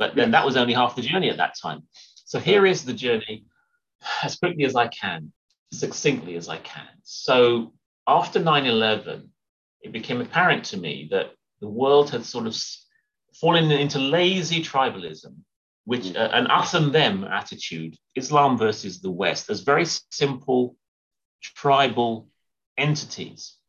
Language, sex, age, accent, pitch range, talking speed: English, male, 40-59, British, 110-165 Hz, 150 wpm